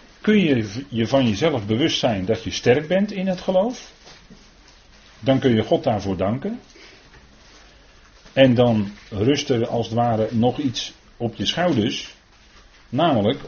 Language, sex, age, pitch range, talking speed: Dutch, male, 40-59, 100-130 Hz, 140 wpm